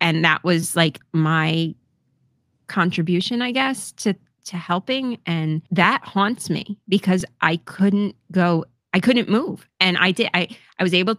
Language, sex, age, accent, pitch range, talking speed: English, female, 30-49, American, 160-195 Hz, 155 wpm